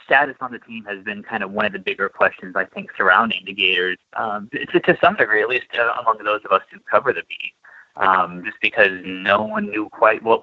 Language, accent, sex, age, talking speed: English, American, male, 30-49, 235 wpm